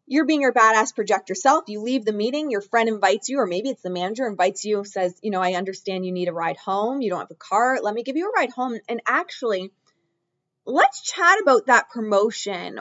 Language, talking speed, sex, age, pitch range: English, 235 wpm, female, 20-39, 170-235 Hz